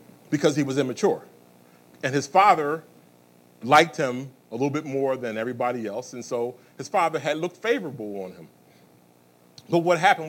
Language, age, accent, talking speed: English, 40-59, American, 165 wpm